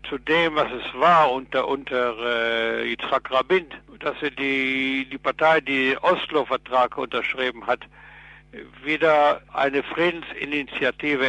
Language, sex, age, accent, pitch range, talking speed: German, male, 60-79, German, 130-155 Hz, 115 wpm